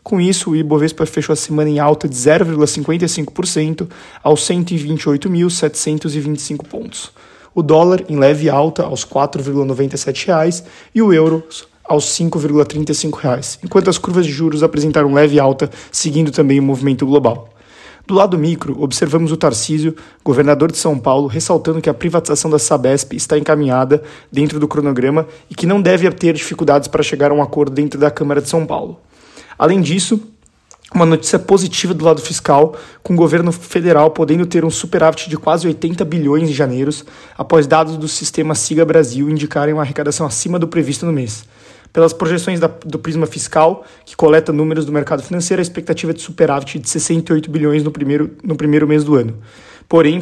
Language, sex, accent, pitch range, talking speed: Portuguese, male, Brazilian, 145-165 Hz, 170 wpm